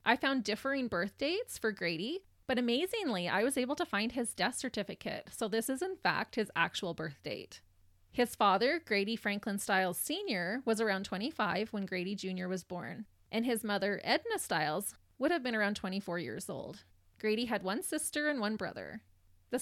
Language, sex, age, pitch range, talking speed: English, female, 20-39, 185-240 Hz, 185 wpm